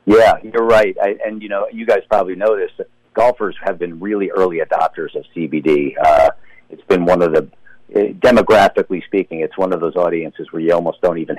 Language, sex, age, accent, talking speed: English, male, 50-69, American, 215 wpm